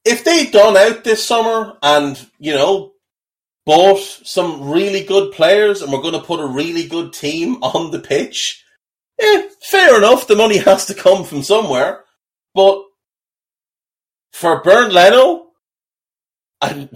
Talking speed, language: 145 wpm, English